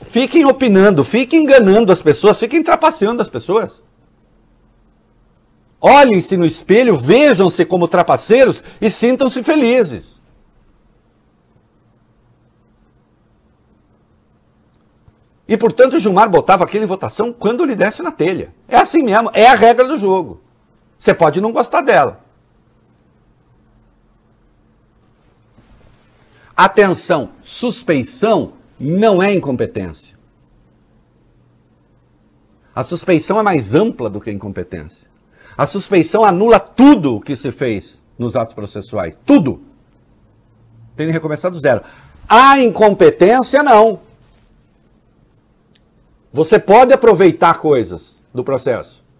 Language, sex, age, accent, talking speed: English, male, 60-79, Brazilian, 100 wpm